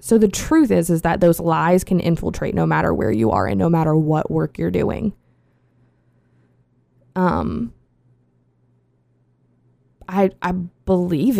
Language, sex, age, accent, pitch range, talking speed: English, female, 20-39, American, 125-210 Hz, 135 wpm